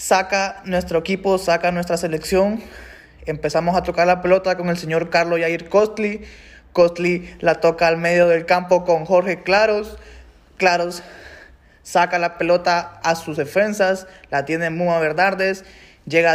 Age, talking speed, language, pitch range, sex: 20-39, 145 wpm, Spanish, 160-180 Hz, male